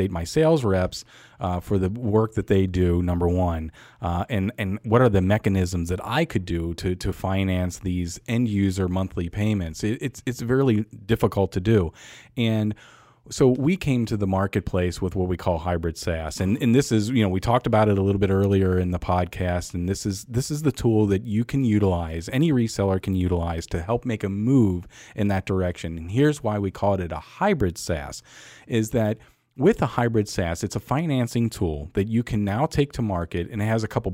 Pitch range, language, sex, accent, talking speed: 95-120 Hz, English, male, American, 215 wpm